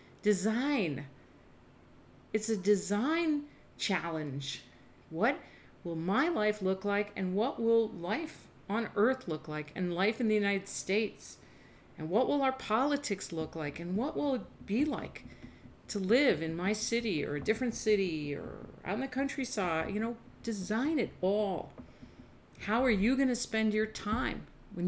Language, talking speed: English, 160 wpm